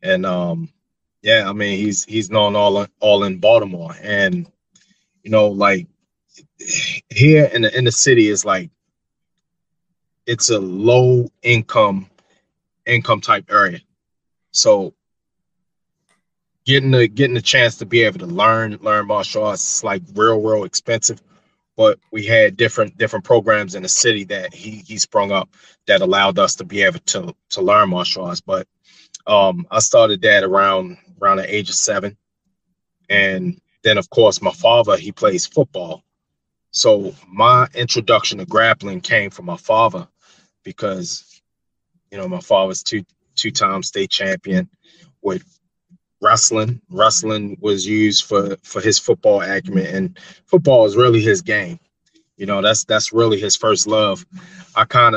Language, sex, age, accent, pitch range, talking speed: English, male, 20-39, American, 105-175 Hz, 155 wpm